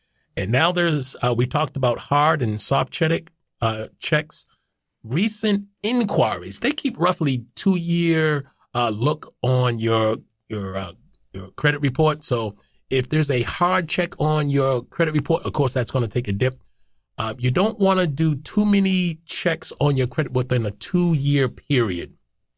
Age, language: 30-49, English